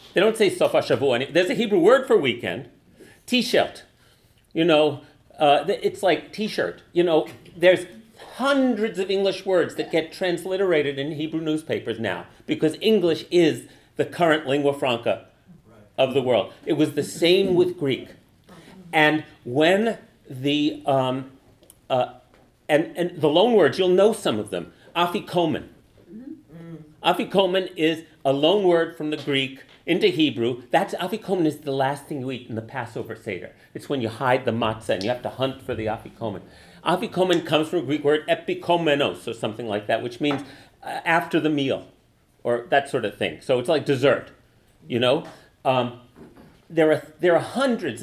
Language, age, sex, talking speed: English, 40-59, male, 165 wpm